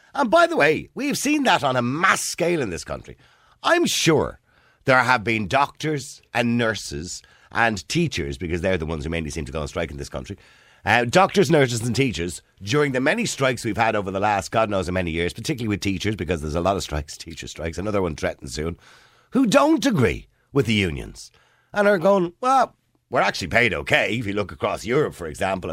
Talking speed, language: 215 wpm, English